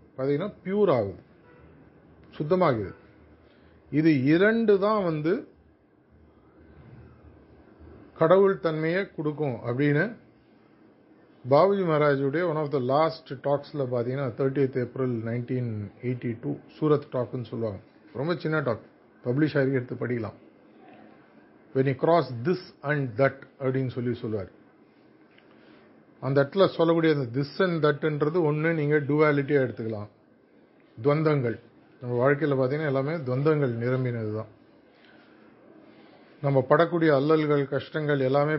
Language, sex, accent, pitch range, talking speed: Tamil, male, native, 120-155 Hz, 65 wpm